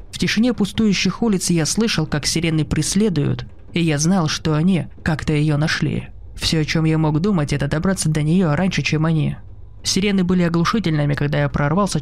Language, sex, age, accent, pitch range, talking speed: Russian, male, 20-39, native, 150-185 Hz, 180 wpm